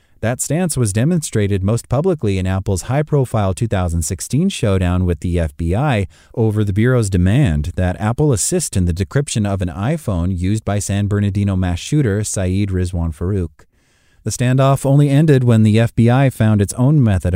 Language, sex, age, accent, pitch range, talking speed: English, male, 30-49, American, 90-115 Hz, 160 wpm